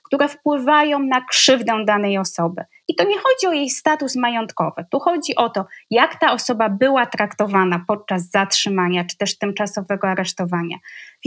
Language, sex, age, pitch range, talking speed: Polish, female, 20-39, 220-275 Hz, 160 wpm